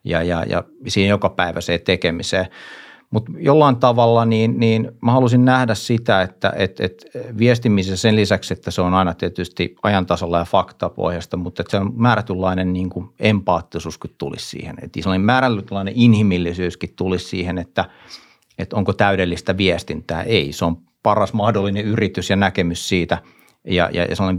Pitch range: 90-110 Hz